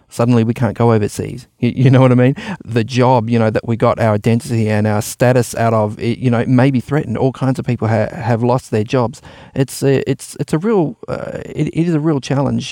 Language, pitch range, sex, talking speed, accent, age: English, 110-125 Hz, male, 235 wpm, Australian, 30-49